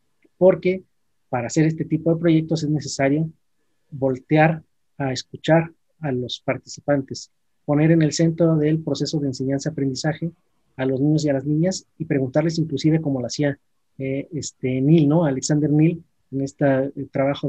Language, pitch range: Spanish, 140-160 Hz